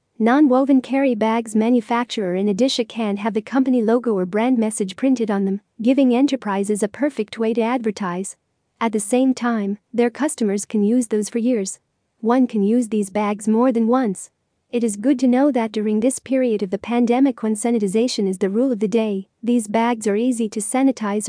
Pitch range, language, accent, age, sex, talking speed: 215-250 Hz, English, American, 40-59, female, 195 wpm